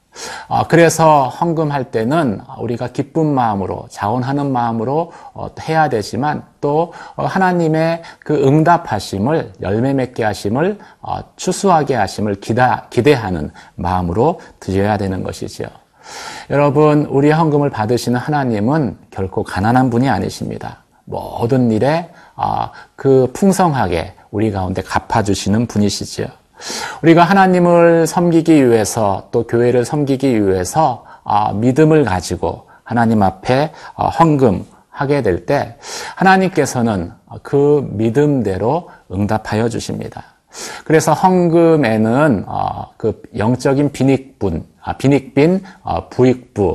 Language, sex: Korean, male